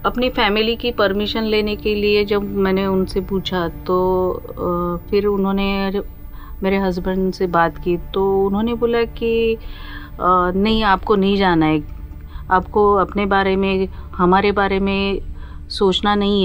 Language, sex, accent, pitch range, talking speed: Hindi, female, native, 160-205 Hz, 140 wpm